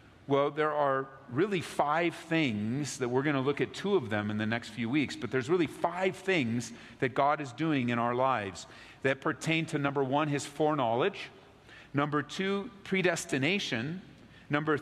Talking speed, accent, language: 175 wpm, American, English